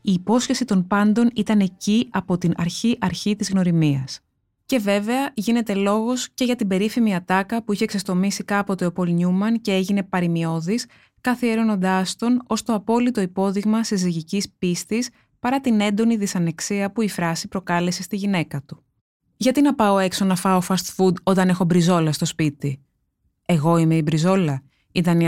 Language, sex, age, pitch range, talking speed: Greek, female, 20-39, 175-220 Hz, 160 wpm